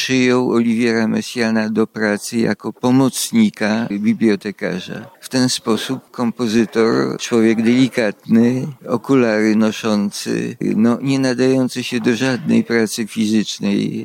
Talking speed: 100 wpm